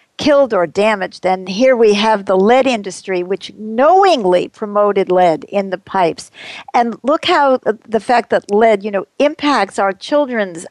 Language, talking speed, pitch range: English, 160 wpm, 205-270 Hz